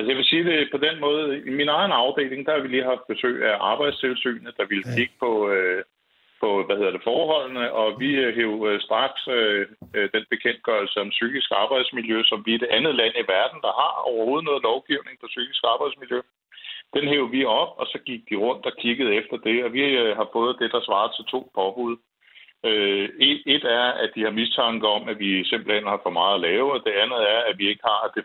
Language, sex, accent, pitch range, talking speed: Danish, male, native, 110-145 Hz, 220 wpm